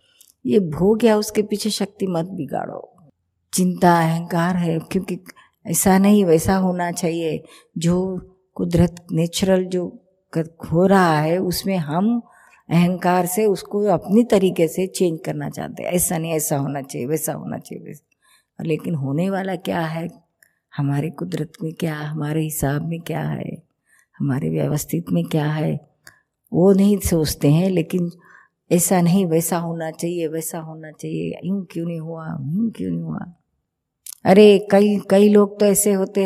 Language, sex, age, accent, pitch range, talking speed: Hindi, female, 50-69, native, 160-190 Hz, 150 wpm